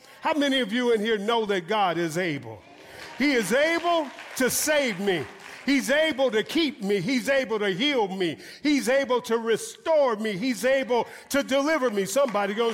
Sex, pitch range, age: male, 200-275 Hz, 50-69